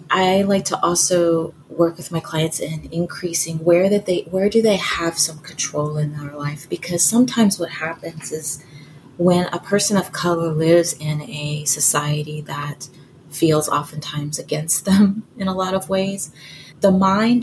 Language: English